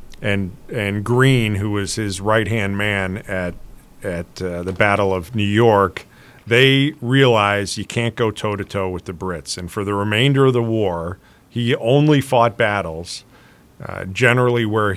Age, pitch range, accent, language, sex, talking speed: 40-59, 100-125 Hz, American, English, male, 165 wpm